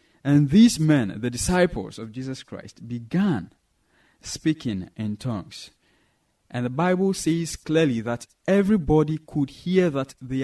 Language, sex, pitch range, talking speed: English, male, 120-165 Hz, 130 wpm